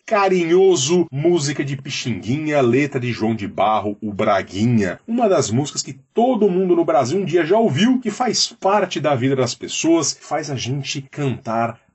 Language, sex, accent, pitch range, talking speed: Portuguese, male, Brazilian, 125-205 Hz, 170 wpm